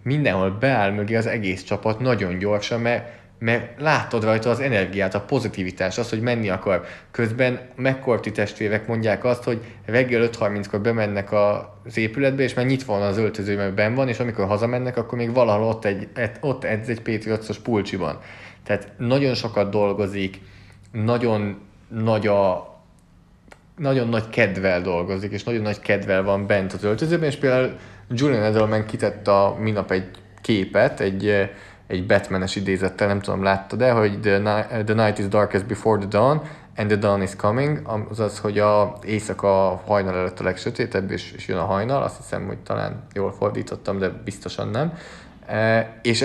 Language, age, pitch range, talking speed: Hungarian, 20-39, 100-120 Hz, 155 wpm